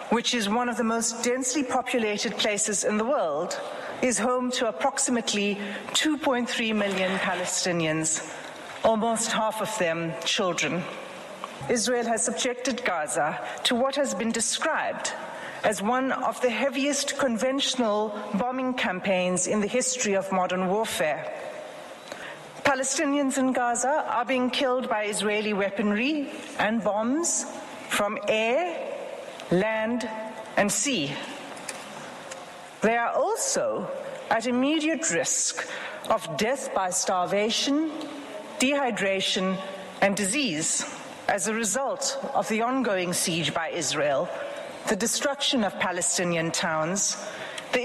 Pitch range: 195-265 Hz